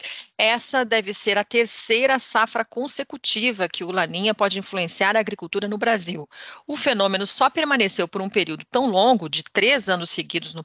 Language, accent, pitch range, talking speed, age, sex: English, Brazilian, 180-230 Hz, 170 wpm, 40-59, female